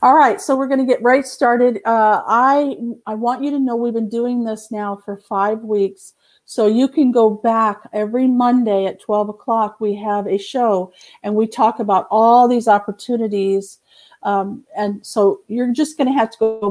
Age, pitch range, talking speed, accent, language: 50-69, 200-245 Hz, 200 wpm, American, English